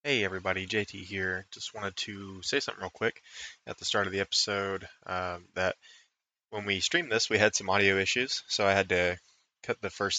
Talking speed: 205 wpm